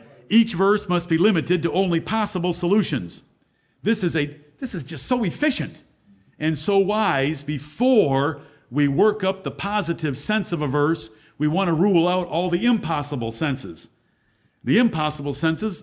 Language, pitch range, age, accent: English, 155-215 Hz, 50-69, American